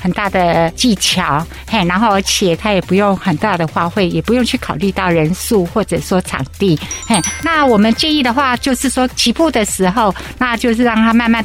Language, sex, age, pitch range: Chinese, female, 60-79, 185-245 Hz